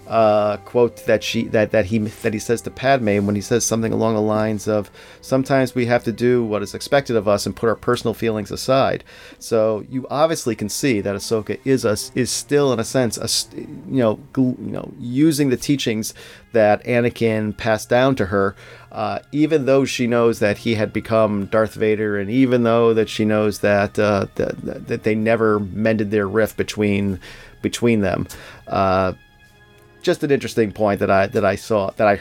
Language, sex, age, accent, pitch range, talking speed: English, male, 40-59, American, 100-120 Hz, 195 wpm